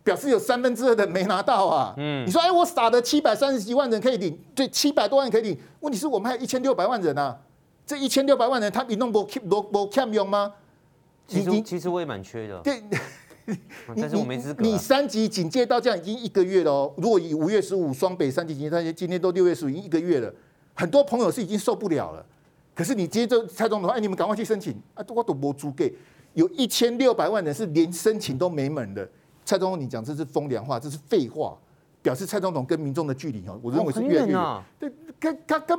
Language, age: Chinese, 50-69